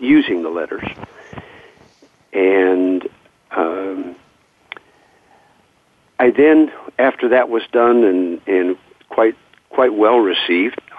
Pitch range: 95-125 Hz